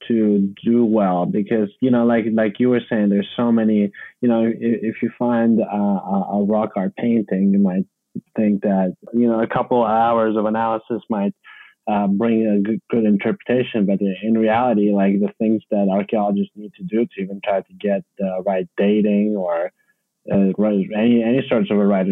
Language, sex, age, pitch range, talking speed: English, male, 20-39, 100-115 Hz, 195 wpm